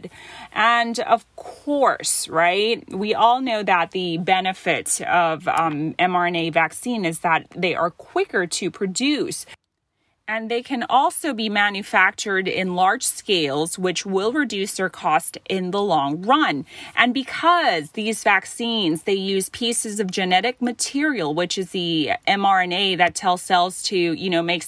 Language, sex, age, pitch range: Thai, female, 30-49, 170-220 Hz